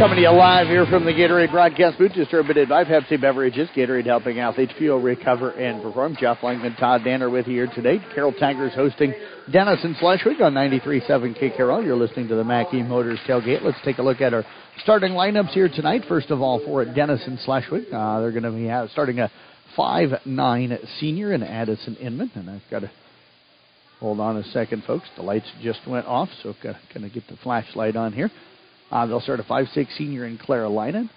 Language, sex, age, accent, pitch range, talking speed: English, male, 50-69, American, 115-140 Hz, 200 wpm